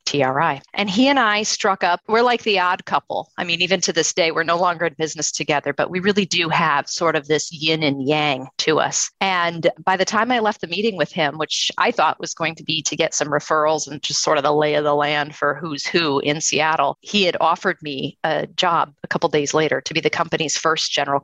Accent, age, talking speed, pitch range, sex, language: American, 40-59, 250 wpm, 150-190 Hz, female, English